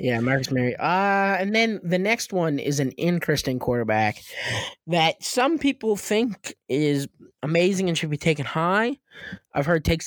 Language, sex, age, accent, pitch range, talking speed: English, male, 20-39, American, 135-185 Hz, 160 wpm